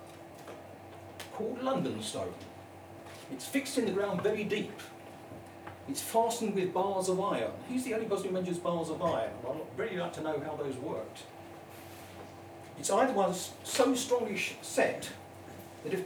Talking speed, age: 155 wpm, 50-69